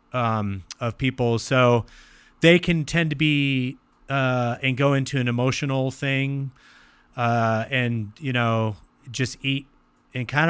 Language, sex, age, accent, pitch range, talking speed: English, male, 30-49, American, 120-145 Hz, 135 wpm